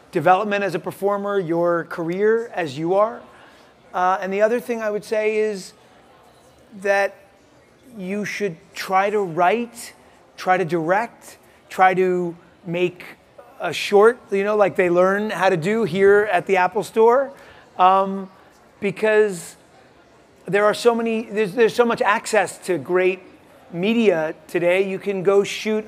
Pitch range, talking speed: 180-210 Hz, 150 wpm